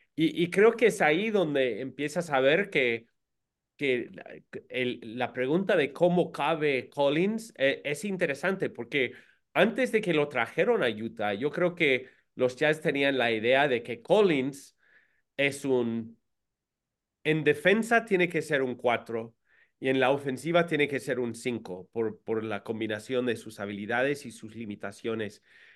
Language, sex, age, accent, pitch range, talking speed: English, male, 40-59, Mexican, 120-160 Hz, 160 wpm